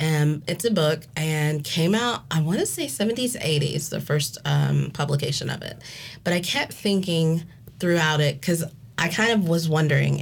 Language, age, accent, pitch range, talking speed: English, 20-39, American, 135-160 Hz, 180 wpm